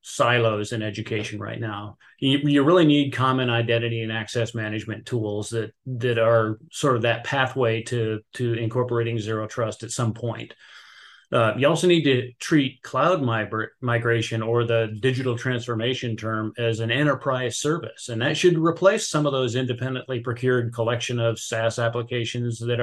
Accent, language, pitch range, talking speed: American, English, 115-130 Hz, 165 wpm